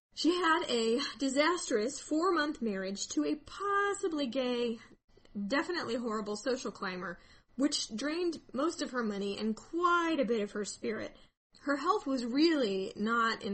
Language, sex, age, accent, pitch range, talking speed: English, female, 10-29, American, 215-290 Hz, 145 wpm